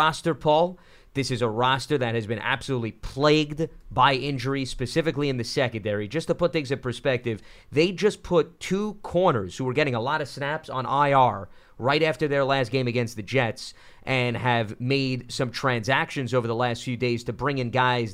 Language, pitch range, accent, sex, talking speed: English, 120-145 Hz, American, male, 195 wpm